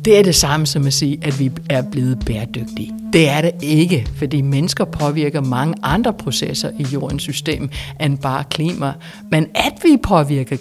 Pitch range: 140-175 Hz